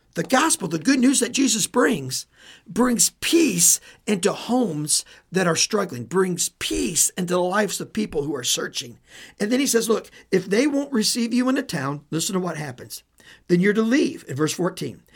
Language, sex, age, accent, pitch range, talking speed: English, male, 50-69, American, 145-220 Hz, 195 wpm